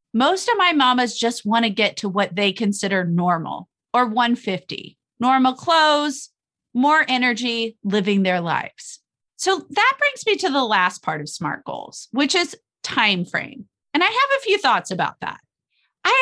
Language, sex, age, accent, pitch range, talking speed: English, female, 30-49, American, 205-300 Hz, 170 wpm